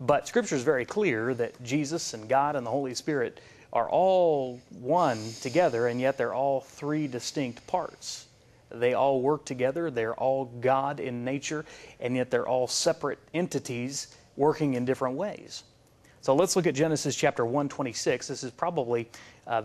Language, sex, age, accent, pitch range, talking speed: English, male, 30-49, American, 120-150 Hz, 165 wpm